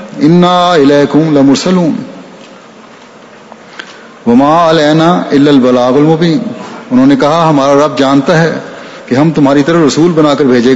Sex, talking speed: male, 135 wpm